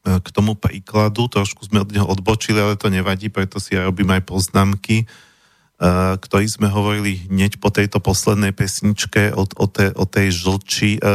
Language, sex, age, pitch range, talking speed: Slovak, male, 40-59, 95-110 Hz, 165 wpm